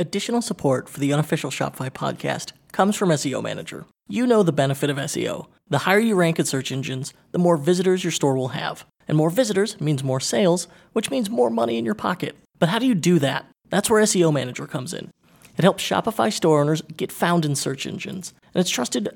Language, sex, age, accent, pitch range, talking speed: English, male, 30-49, American, 145-195 Hz, 215 wpm